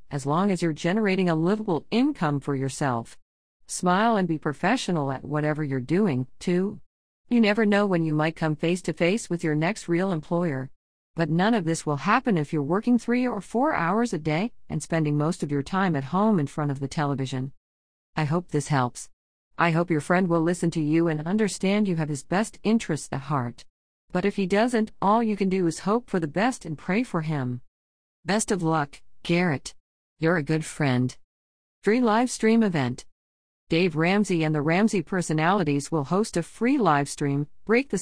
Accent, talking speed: American, 195 wpm